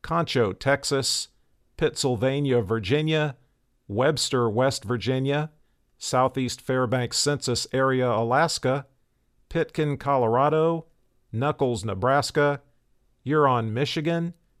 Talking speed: 75 wpm